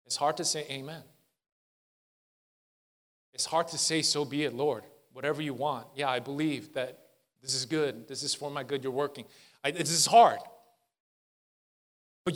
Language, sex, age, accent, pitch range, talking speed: English, male, 30-49, American, 160-220 Hz, 165 wpm